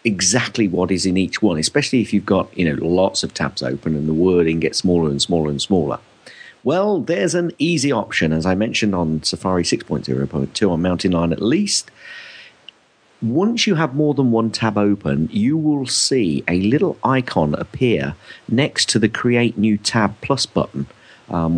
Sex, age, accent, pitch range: male, 40-59, British, 85-120 Hz